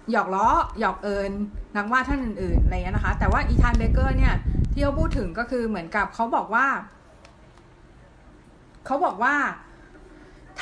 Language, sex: Thai, female